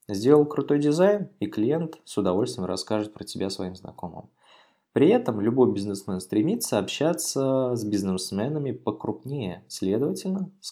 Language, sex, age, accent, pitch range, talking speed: Russian, male, 20-39, native, 100-150 Hz, 130 wpm